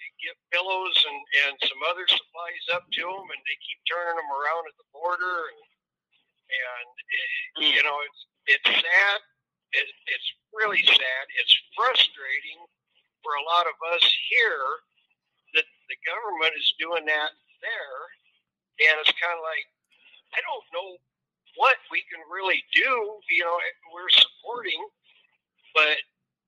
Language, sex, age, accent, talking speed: English, male, 50-69, American, 145 wpm